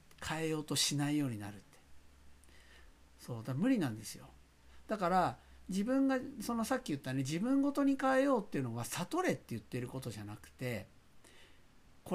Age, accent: 60-79, native